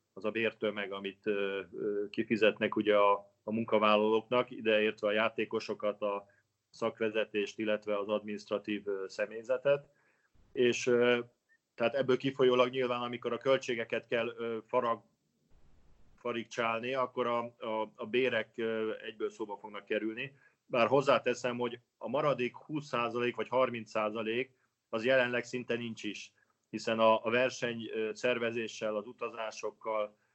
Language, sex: Hungarian, male